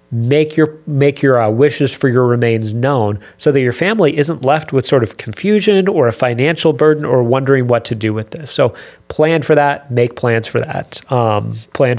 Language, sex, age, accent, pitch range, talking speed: English, male, 30-49, American, 115-145 Hz, 205 wpm